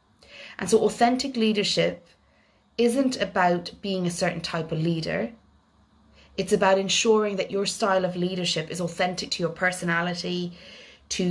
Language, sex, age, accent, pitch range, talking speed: English, female, 30-49, Irish, 170-195 Hz, 140 wpm